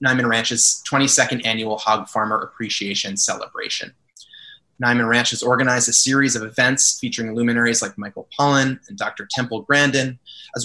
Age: 20-39